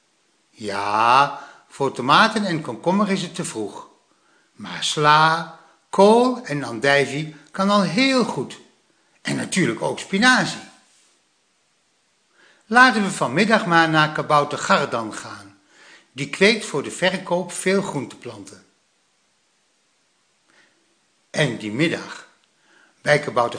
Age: 60-79